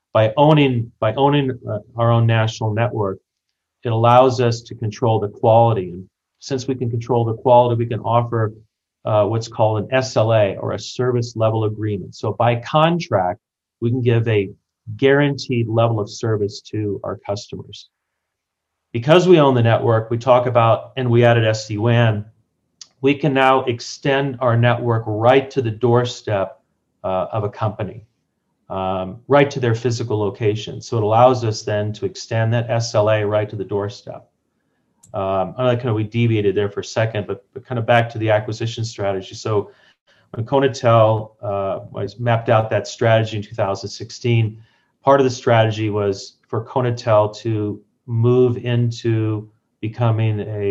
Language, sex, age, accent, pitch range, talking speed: English, male, 40-59, American, 105-125 Hz, 160 wpm